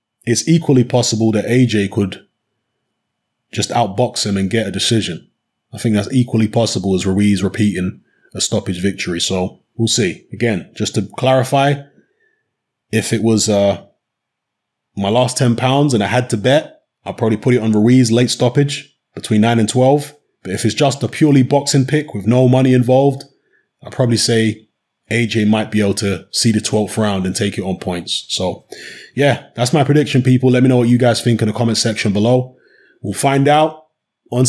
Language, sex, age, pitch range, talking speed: English, male, 20-39, 110-135 Hz, 185 wpm